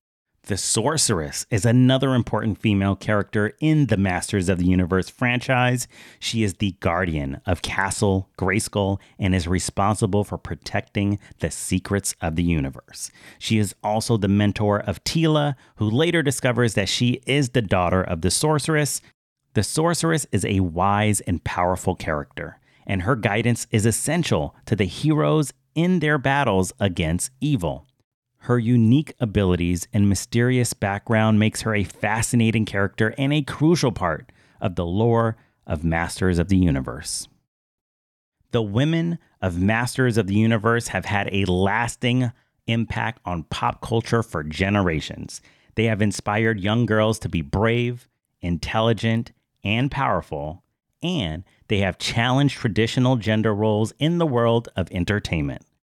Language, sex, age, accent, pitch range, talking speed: English, male, 30-49, American, 95-125 Hz, 145 wpm